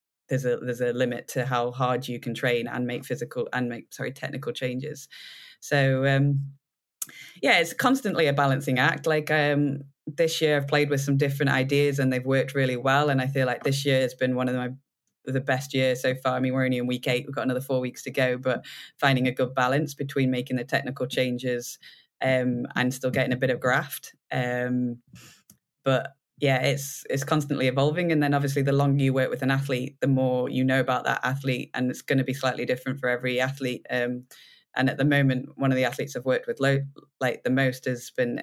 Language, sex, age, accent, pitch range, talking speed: English, female, 20-39, British, 125-140 Hz, 220 wpm